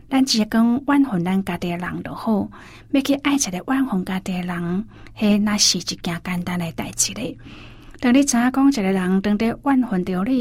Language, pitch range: Chinese, 180-220 Hz